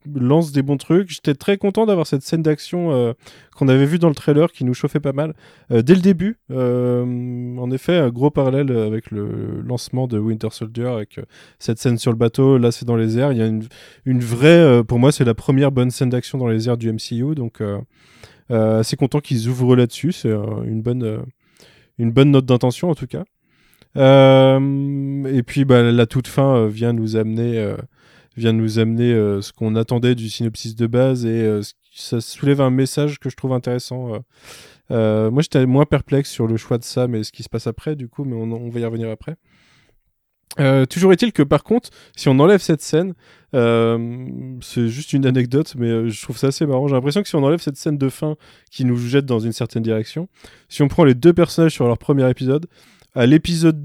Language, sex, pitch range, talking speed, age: French, male, 115-145 Hz, 225 wpm, 20-39